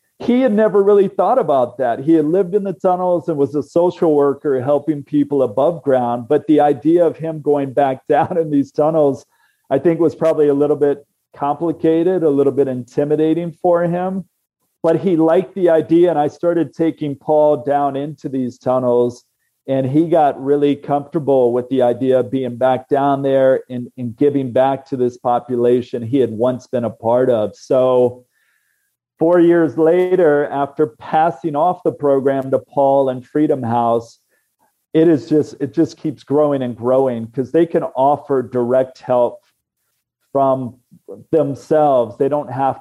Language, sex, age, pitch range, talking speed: English, male, 40-59, 130-160 Hz, 170 wpm